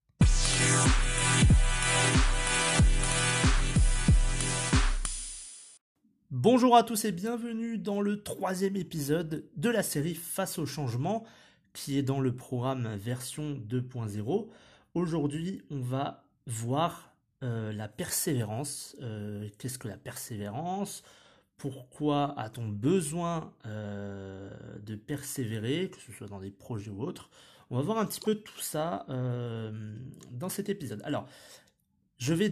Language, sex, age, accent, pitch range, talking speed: French, male, 30-49, French, 115-165 Hz, 115 wpm